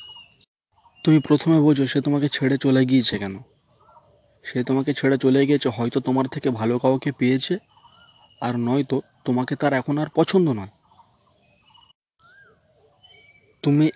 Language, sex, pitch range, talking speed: Bengali, male, 125-150 Hz, 125 wpm